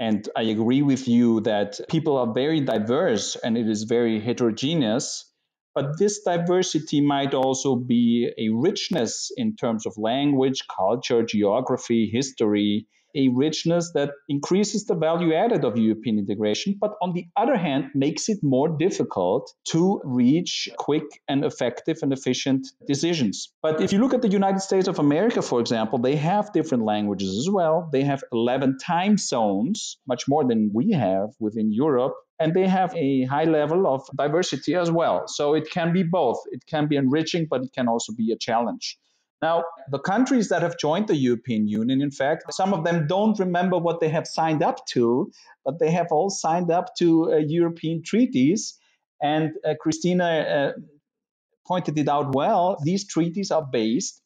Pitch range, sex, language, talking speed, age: 125-175 Hz, male, Hebrew, 175 wpm, 40-59